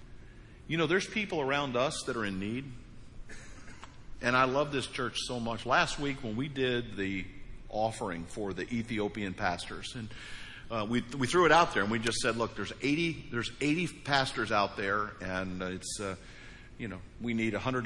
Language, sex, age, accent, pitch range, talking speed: English, male, 50-69, American, 115-155 Hz, 195 wpm